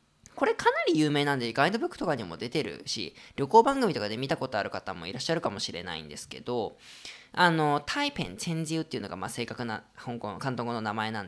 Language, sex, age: Japanese, female, 20-39